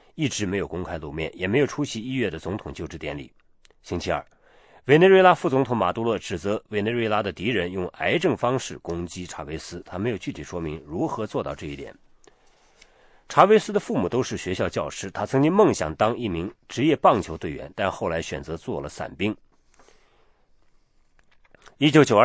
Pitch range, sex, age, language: 90-130 Hz, male, 40-59, English